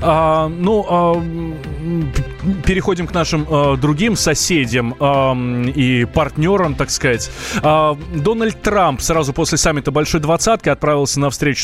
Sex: male